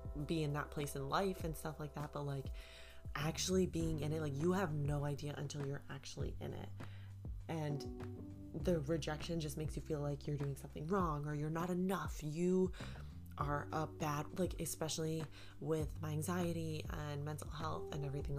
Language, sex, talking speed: English, female, 185 wpm